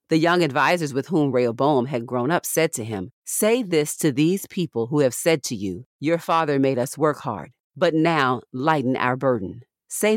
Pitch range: 130-165 Hz